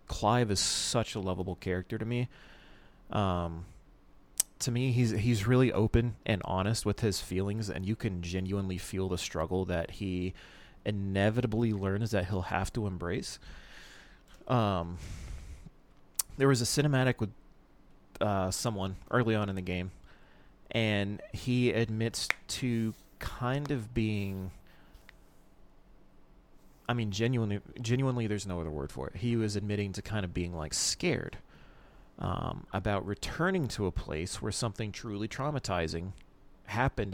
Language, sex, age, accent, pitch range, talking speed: English, male, 30-49, American, 95-115 Hz, 140 wpm